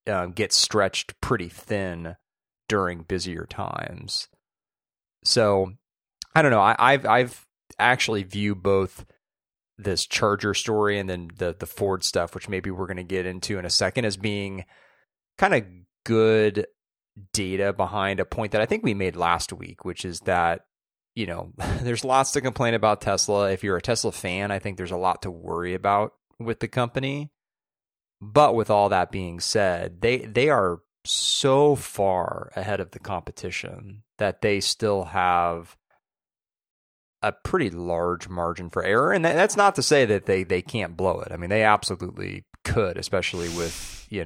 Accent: American